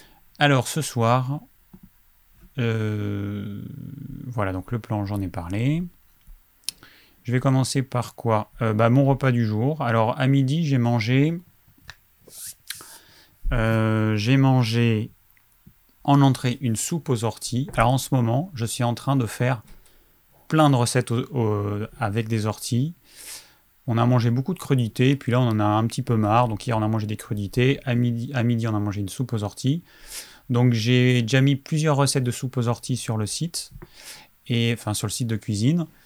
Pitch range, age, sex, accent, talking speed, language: 110-135 Hz, 30-49, male, French, 175 wpm, French